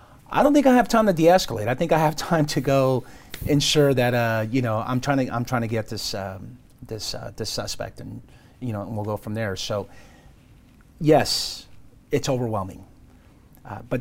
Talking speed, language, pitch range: 200 wpm, English, 110-125 Hz